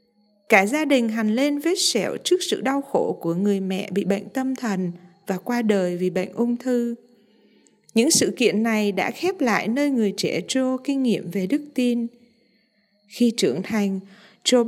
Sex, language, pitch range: female, Vietnamese, 210-275 Hz